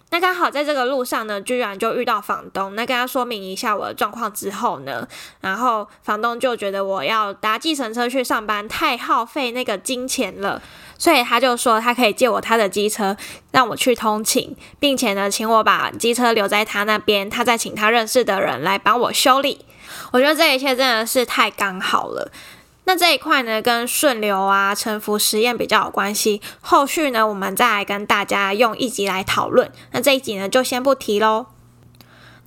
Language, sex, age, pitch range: Chinese, female, 10-29, 205-255 Hz